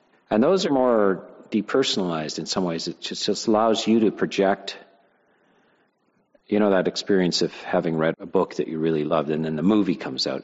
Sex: male